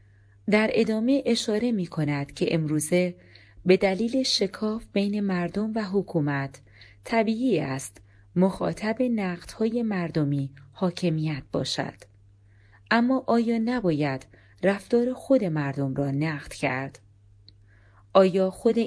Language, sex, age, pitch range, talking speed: Persian, female, 30-49, 135-200 Hz, 100 wpm